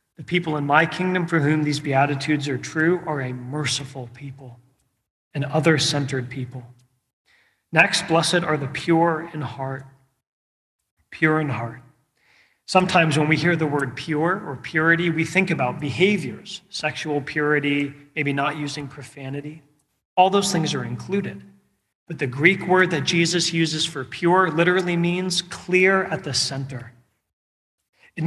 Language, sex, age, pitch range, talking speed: English, male, 40-59, 135-170 Hz, 145 wpm